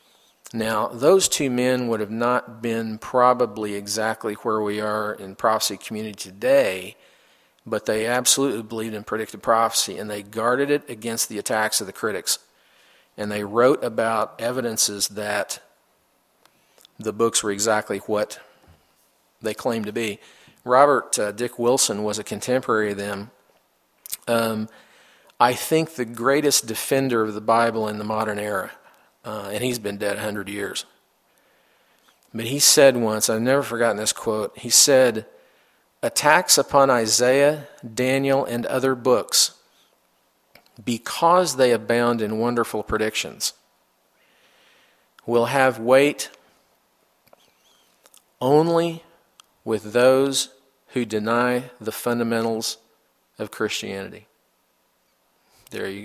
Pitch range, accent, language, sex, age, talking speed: 110-130 Hz, American, English, male, 50-69, 125 wpm